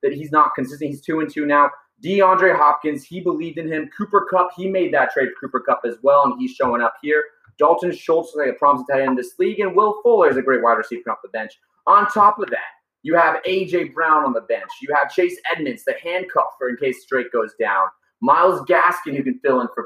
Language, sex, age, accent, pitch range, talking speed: English, male, 30-49, American, 150-205 Hz, 250 wpm